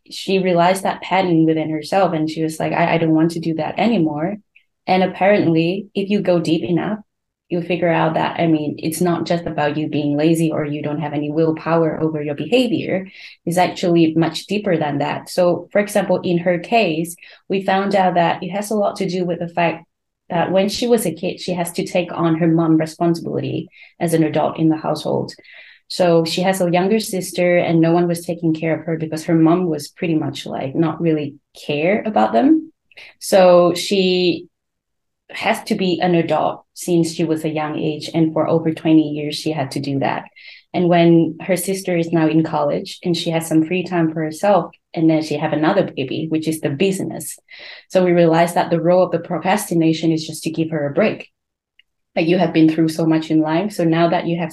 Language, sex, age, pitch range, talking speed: English, female, 20-39, 160-180 Hz, 215 wpm